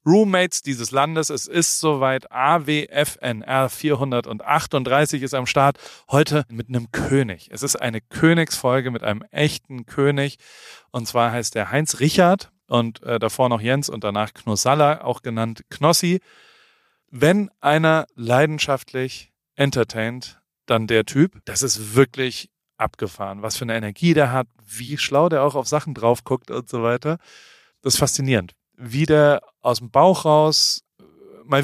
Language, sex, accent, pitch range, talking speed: German, male, German, 120-150 Hz, 145 wpm